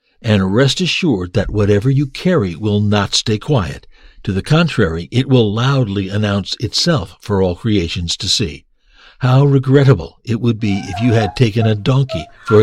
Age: 60-79